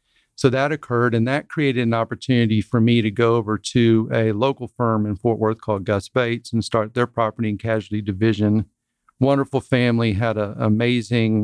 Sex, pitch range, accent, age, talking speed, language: male, 115-130 Hz, American, 50-69, 185 wpm, English